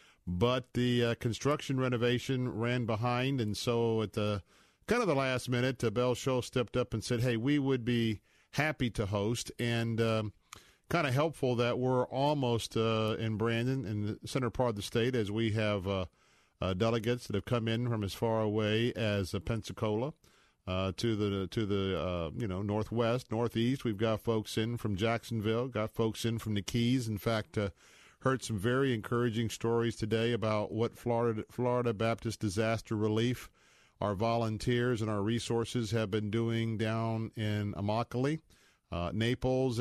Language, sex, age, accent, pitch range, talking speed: English, male, 50-69, American, 105-125 Hz, 175 wpm